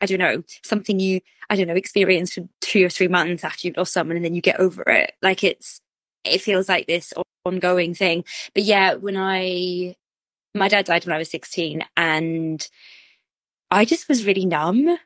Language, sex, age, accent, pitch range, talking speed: English, female, 20-39, British, 170-205 Hz, 195 wpm